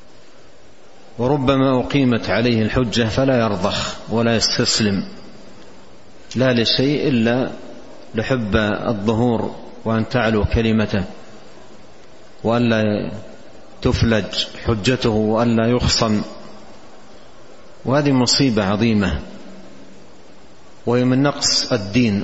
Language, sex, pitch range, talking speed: Arabic, male, 110-125 Hz, 75 wpm